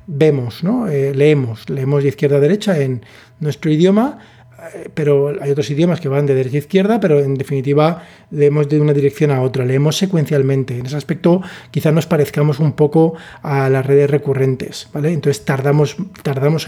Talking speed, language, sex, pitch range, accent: 180 wpm, Spanish, male, 140-175 Hz, Spanish